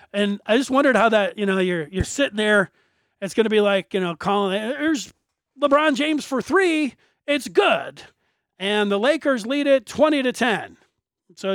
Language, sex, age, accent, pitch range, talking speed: English, male, 40-59, American, 190-255 Hz, 185 wpm